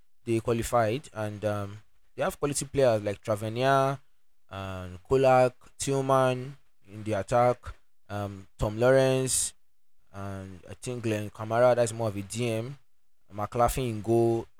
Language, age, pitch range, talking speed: English, 20-39, 100-125 Hz, 130 wpm